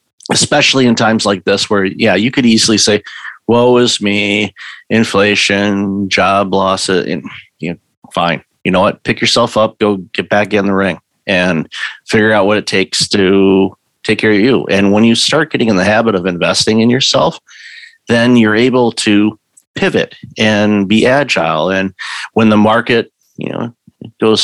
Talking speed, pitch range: 175 wpm, 100-120 Hz